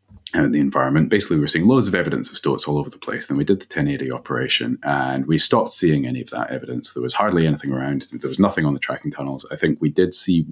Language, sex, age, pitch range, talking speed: English, male, 30-49, 70-85 Hz, 270 wpm